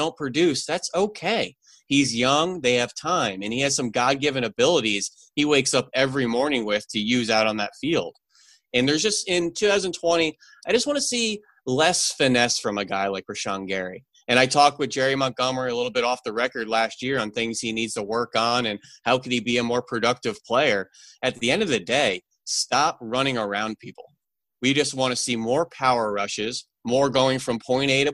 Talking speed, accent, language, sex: 210 wpm, American, English, male